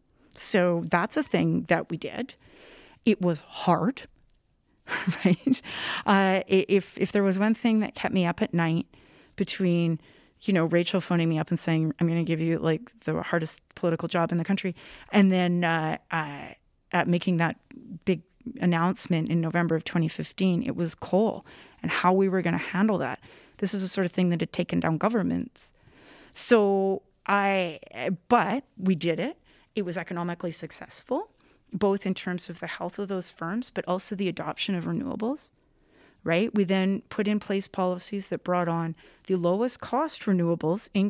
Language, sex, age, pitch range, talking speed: English, female, 30-49, 170-205 Hz, 175 wpm